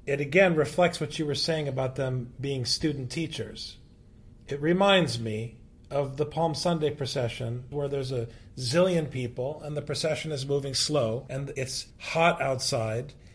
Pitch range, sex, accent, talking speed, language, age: 125-175 Hz, male, American, 155 wpm, English, 40-59